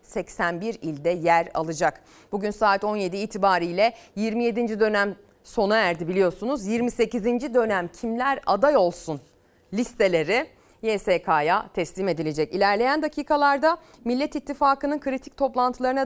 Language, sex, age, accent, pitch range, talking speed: Turkish, female, 30-49, native, 175-265 Hz, 105 wpm